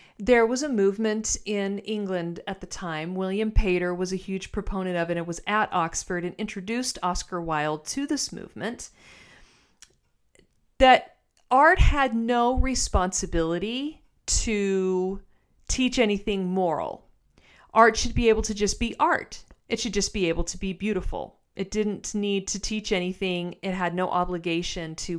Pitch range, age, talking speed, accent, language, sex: 180-230 Hz, 40-59, 150 wpm, American, English, female